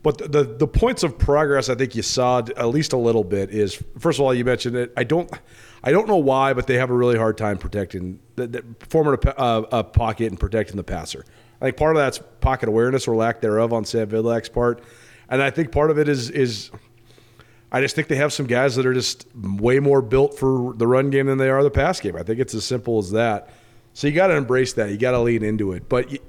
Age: 30-49